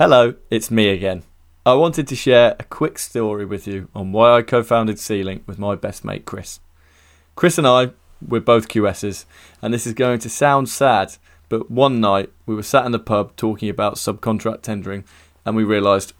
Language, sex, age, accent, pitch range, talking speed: English, male, 20-39, British, 95-125 Hz, 195 wpm